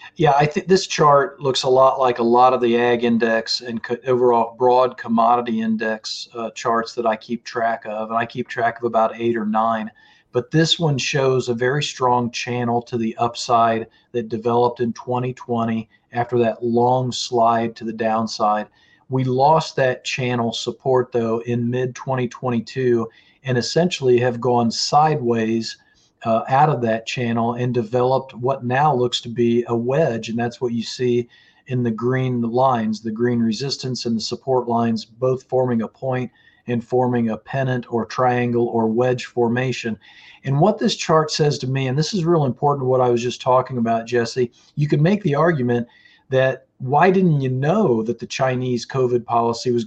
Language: English